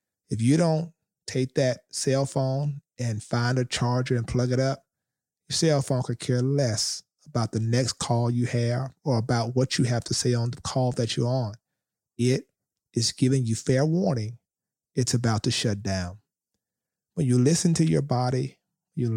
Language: English